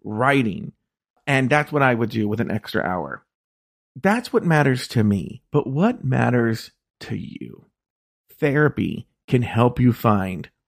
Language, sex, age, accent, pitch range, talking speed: English, male, 40-59, American, 115-150 Hz, 145 wpm